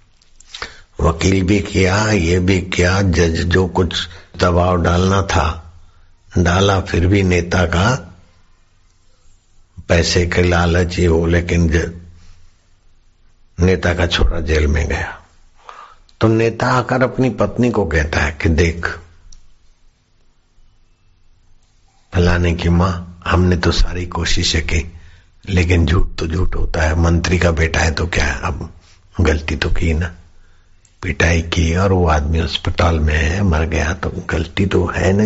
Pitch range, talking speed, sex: 85-100 Hz, 135 wpm, male